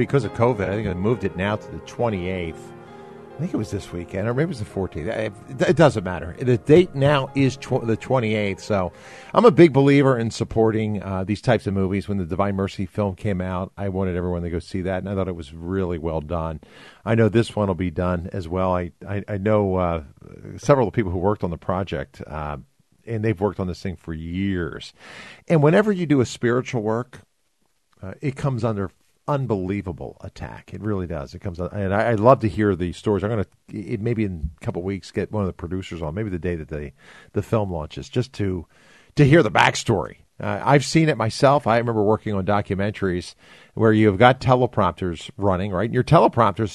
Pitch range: 90-115 Hz